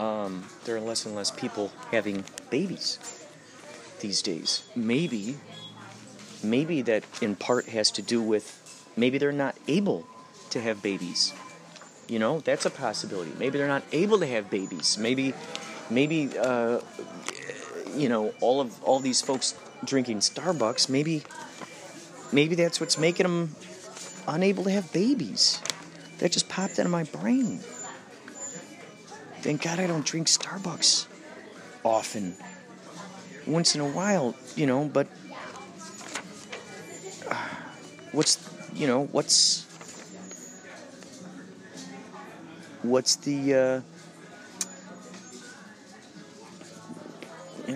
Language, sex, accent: English, male, American